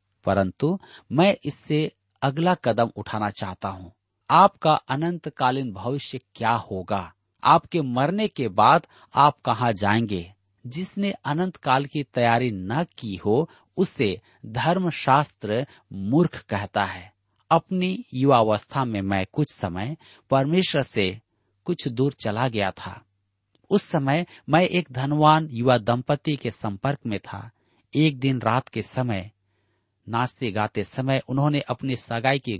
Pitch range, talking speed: 105-150 Hz, 125 wpm